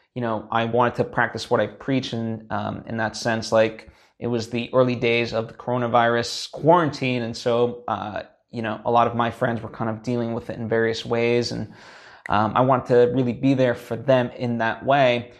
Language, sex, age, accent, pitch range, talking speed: English, male, 20-39, American, 115-125 Hz, 220 wpm